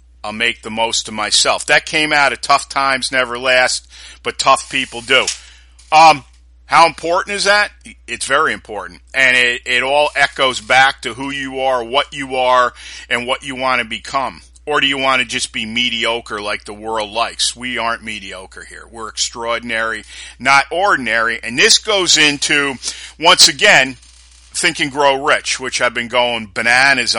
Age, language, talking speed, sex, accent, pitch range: 50-69, English, 175 wpm, male, American, 100-135 Hz